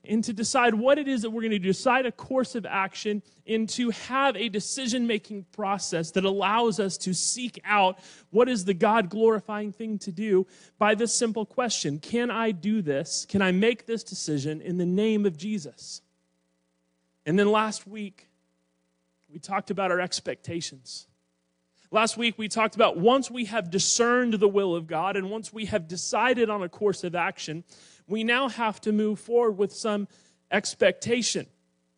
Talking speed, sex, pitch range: 175 wpm, male, 135-215 Hz